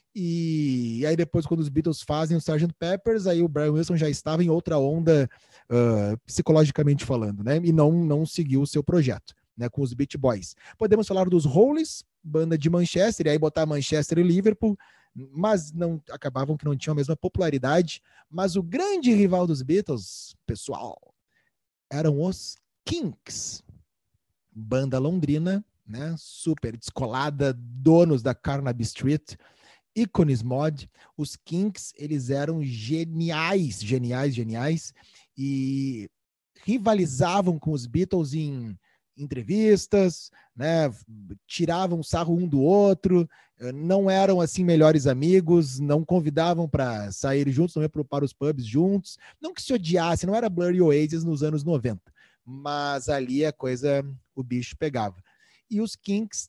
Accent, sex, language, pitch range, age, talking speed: Brazilian, male, Portuguese, 135-175 Hz, 30-49, 145 wpm